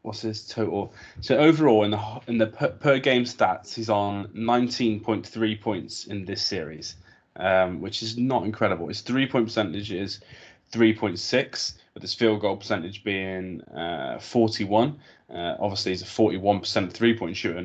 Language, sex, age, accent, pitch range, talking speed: English, male, 20-39, British, 100-120 Hz, 145 wpm